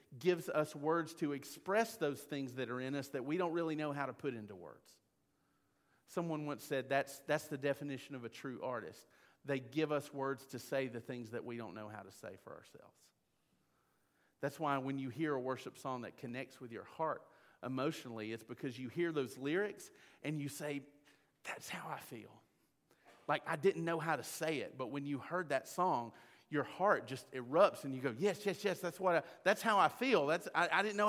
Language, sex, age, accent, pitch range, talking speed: English, male, 40-59, American, 125-165 Hz, 215 wpm